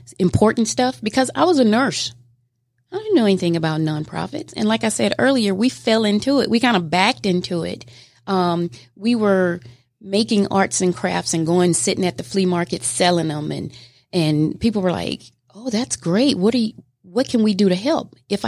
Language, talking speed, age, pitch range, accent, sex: English, 200 wpm, 30-49, 160-210 Hz, American, female